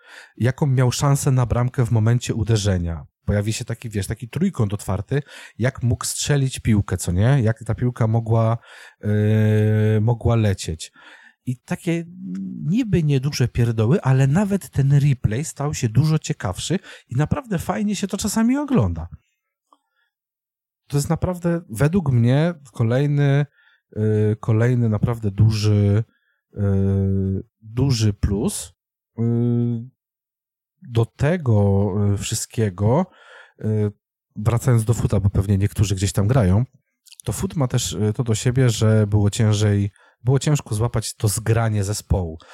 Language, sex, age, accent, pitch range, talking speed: Polish, male, 40-59, native, 105-135 Hz, 125 wpm